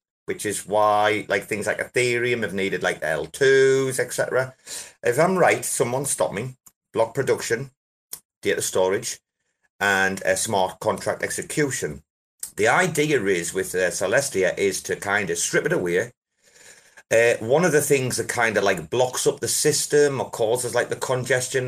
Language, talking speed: English, 165 wpm